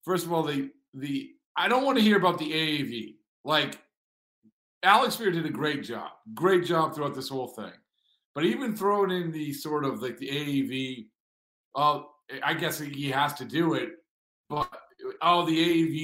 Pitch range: 150-205 Hz